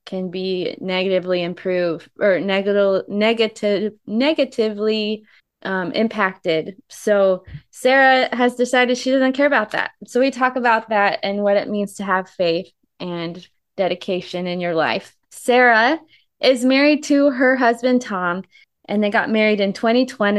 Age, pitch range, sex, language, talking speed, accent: 20-39, 195-235 Hz, female, English, 140 wpm, American